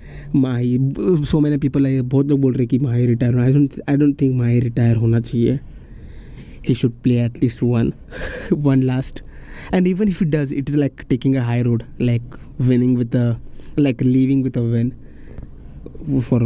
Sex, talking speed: male, 170 wpm